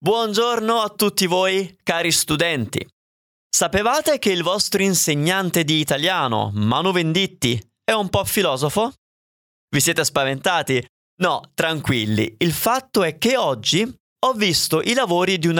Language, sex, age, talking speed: Italian, male, 20-39, 135 wpm